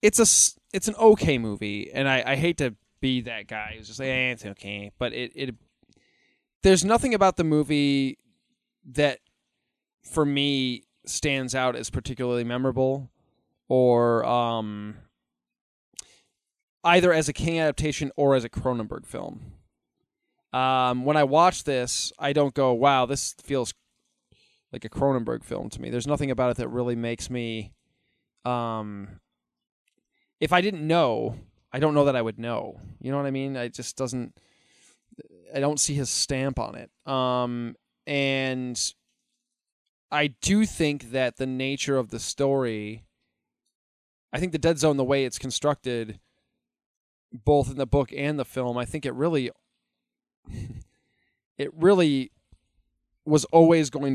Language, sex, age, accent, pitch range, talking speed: English, male, 20-39, American, 120-145 Hz, 150 wpm